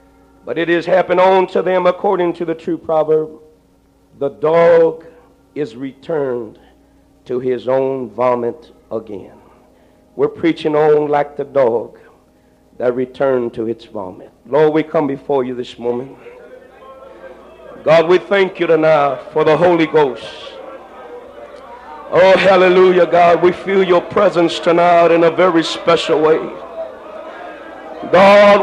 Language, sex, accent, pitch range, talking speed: English, male, American, 165-225 Hz, 130 wpm